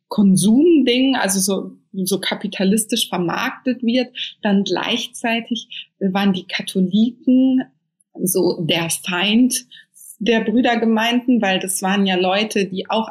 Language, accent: German, German